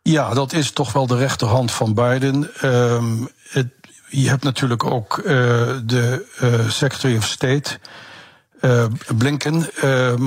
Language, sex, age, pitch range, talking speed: Dutch, male, 60-79, 120-140 Hz, 140 wpm